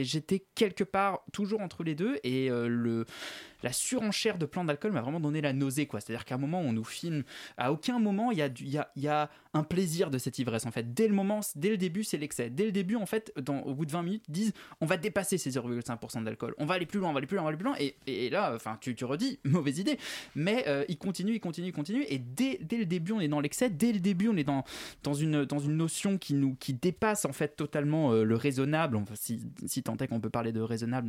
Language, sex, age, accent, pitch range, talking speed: French, male, 20-39, French, 135-195 Hz, 275 wpm